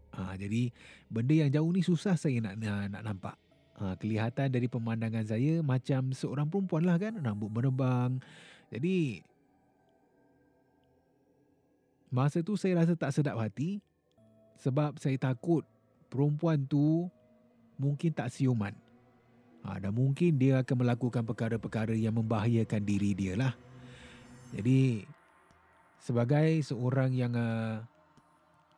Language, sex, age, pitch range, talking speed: Malay, male, 30-49, 115-150 Hz, 120 wpm